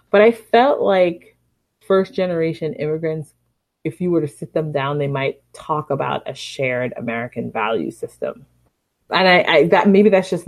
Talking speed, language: 165 wpm, English